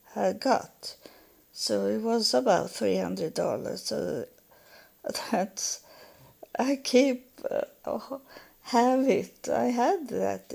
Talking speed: 85 wpm